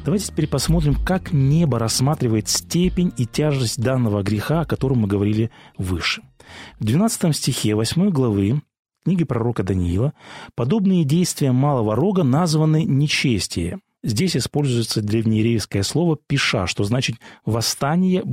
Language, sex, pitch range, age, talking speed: Russian, male, 115-165 Hz, 30-49, 125 wpm